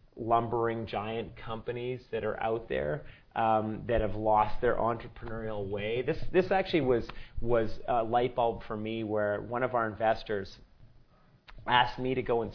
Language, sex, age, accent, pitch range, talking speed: English, male, 30-49, American, 110-125 Hz, 165 wpm